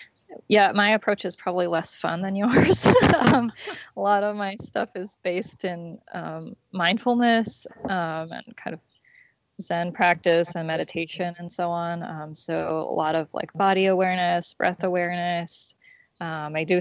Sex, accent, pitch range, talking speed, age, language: female, American, 165-190 Hz, 155 wpm, 20-39, English